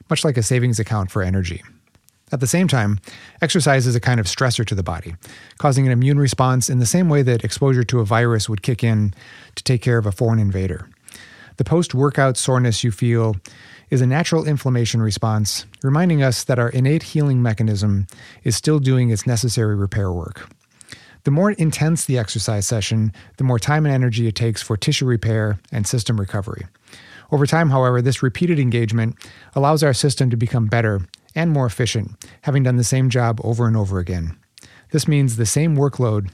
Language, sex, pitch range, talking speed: English, male, 105-135 Hz, 190 wpm